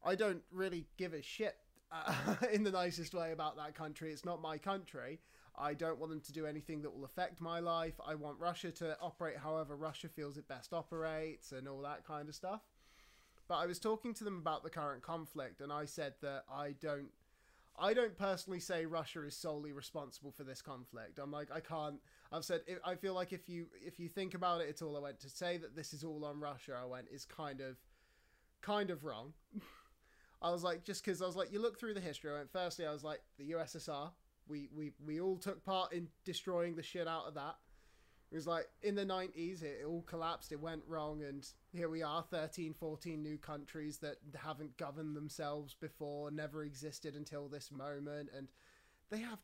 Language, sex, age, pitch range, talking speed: English, male, 20-39, 145-175 Hz, 215 wpm